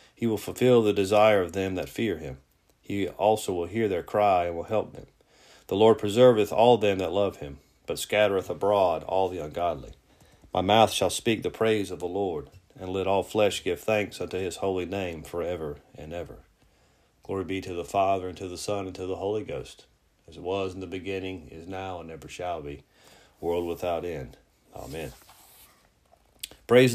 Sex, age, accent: male, 40-59, American